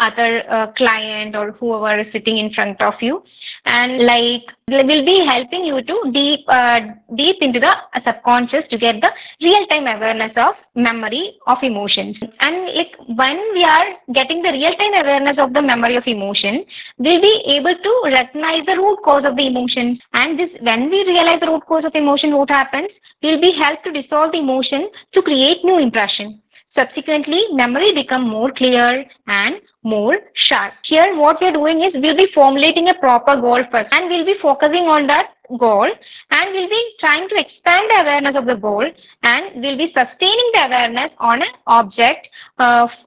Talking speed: 190 wpm